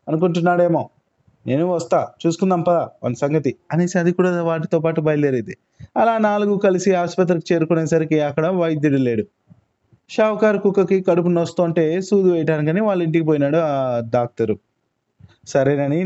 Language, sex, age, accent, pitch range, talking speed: Telugu, male, 20-39, native, 130-180 Hz, 110 wpm